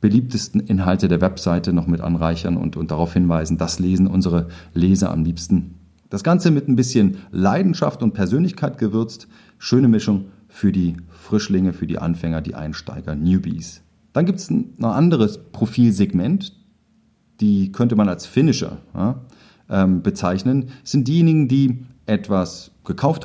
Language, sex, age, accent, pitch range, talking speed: German, male, 40-59, German, 90-120 Hz, 145 wpm